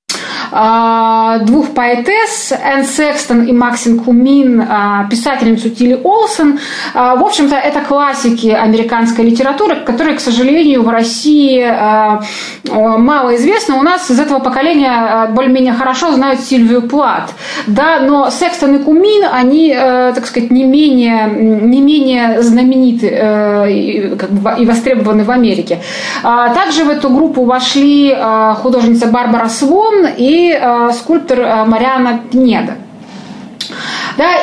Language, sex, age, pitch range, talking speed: Russian, female, 20-39, 230-280 Hz, 115 wpm